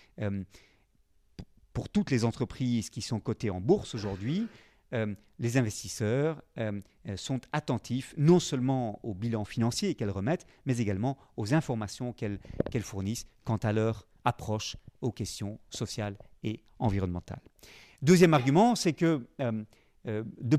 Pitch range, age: 110-140 Hz, 40-59